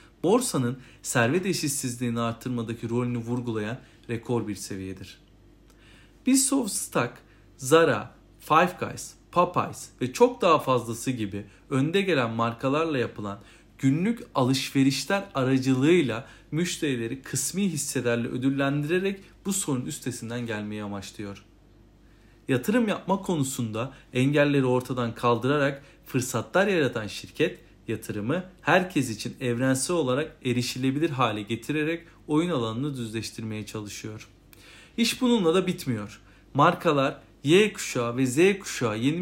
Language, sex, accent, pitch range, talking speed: Turkish, male, native, 115-160 Hz, 105 wpm